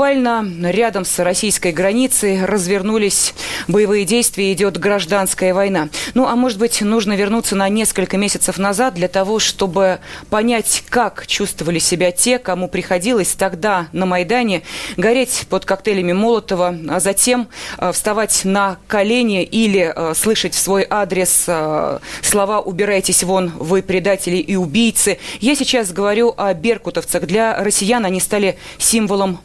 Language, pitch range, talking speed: Russian, 180-215 Hz, 140 wpm